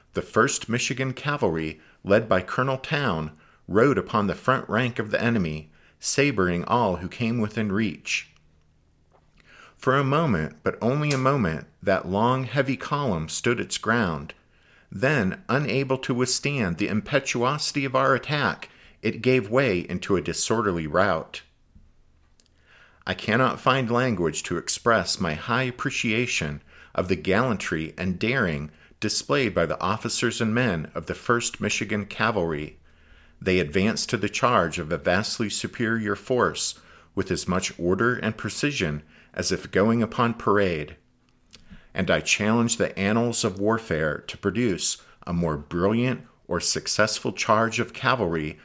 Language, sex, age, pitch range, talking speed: English, male, 50-69, 80-125 Hz, 140 wpm